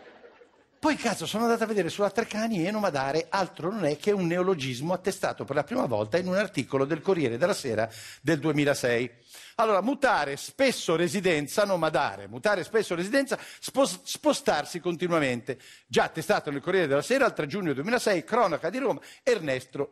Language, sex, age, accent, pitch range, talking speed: Italian, male, 60-79, native, 125-210 Hz, 165 wpm